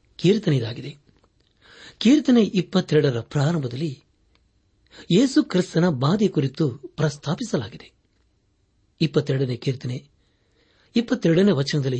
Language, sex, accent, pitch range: Kannada, male, native, 115-165 Hz